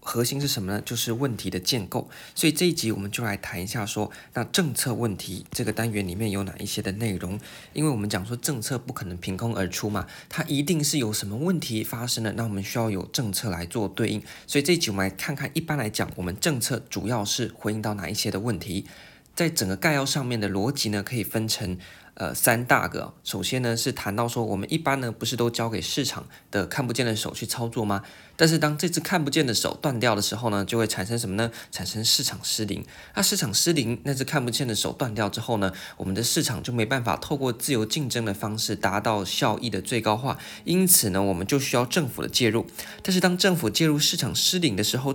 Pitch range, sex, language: 105-145 Hz, male, Chinese